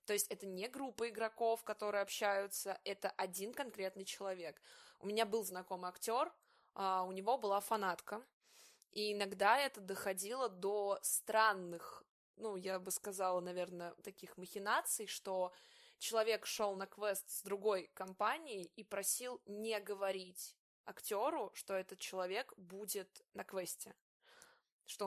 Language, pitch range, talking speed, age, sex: Russian, 195-220 Hz, 130 wpm, 20-39, female